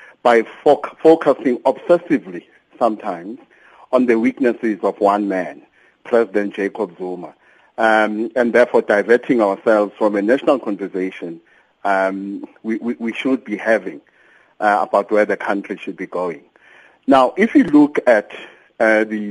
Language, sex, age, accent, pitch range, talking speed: English, male, 50-69, South African, 110-135 Hz, 135 wpm